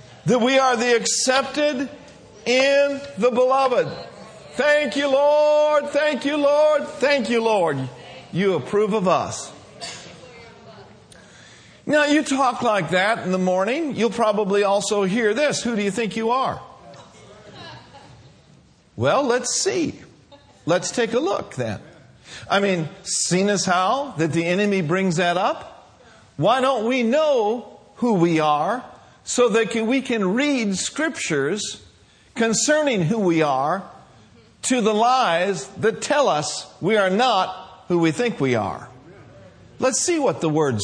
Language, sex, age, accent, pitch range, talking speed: English, male, 50-69, American, 170-260 Hz, 140 wpm